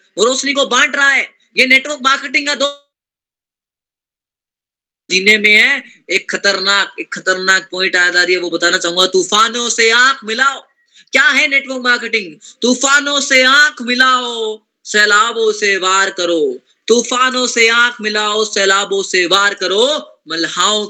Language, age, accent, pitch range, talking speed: Hindi, 20-39, native, 190-260 Hz, 130 wpm